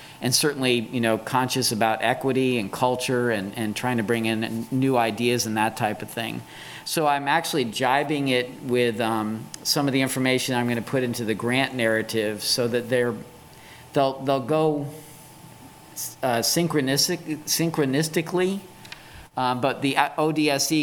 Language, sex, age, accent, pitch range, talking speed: English, male, 40-59, American, 115-140 Hz, 155 wpm